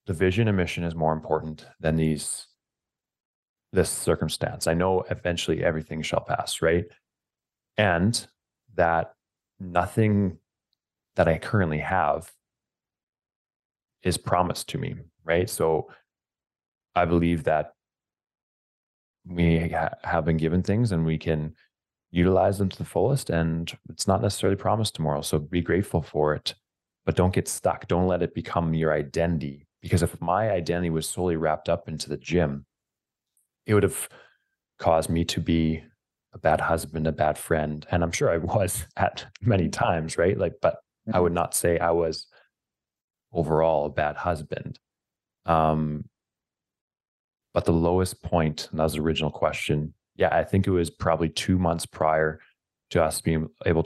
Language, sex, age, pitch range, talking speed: English, male, 30-49, 80-90 Hz, 155 wpm